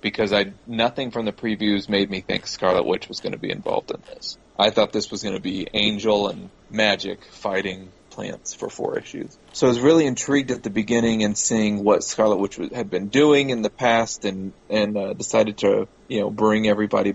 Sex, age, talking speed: male, 30-49, 215 wpm